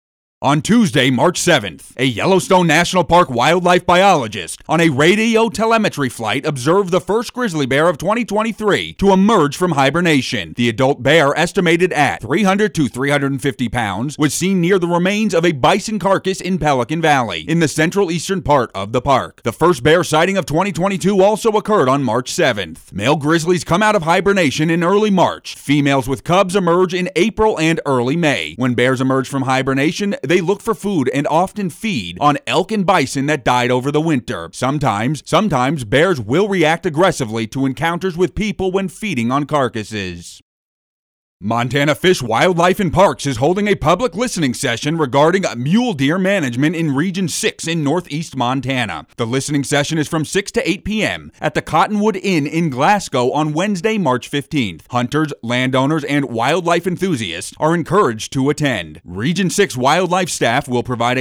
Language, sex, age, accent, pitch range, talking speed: English, male, 30-49, American, 135-185 Hz, 170 wpm